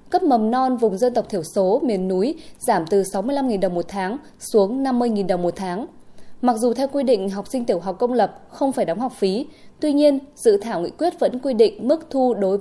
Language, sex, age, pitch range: Vietnamese, female, 20-39, 200-260 Hz